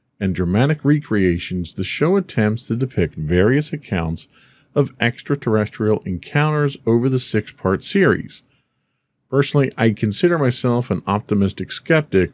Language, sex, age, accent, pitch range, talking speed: English, male, 40-59, American, 95-130 Hz, 115 wpm